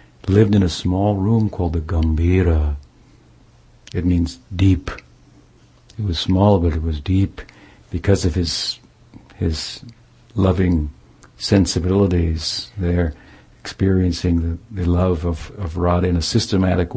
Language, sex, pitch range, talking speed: English, male, 85-100 Hz, 125 wpm